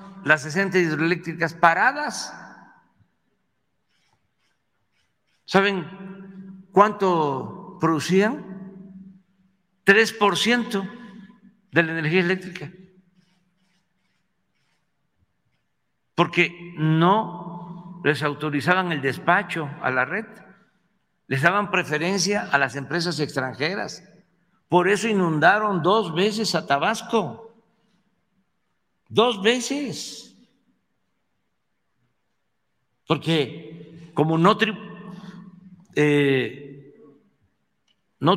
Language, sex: Spanish, male